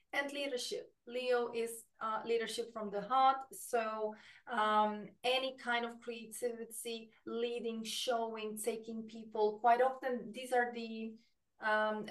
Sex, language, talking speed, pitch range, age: female, English, 125 wpm, 205-240 Hz, 30-49